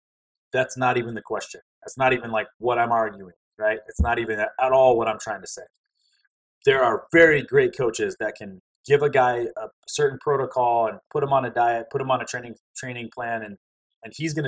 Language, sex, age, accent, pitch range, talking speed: English, male, 30-49, American, 110-175 Hz, 220 wpm